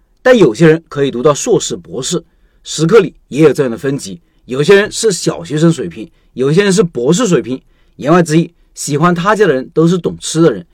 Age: 50-69